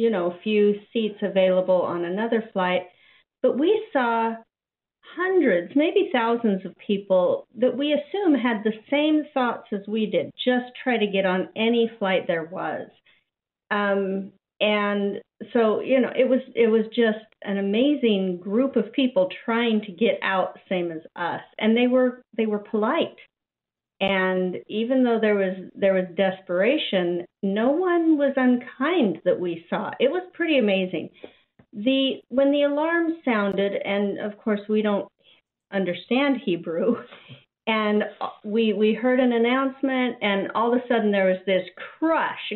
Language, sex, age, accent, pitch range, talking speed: English, female, 40-59, American, 195-255 Hz, 155 wpm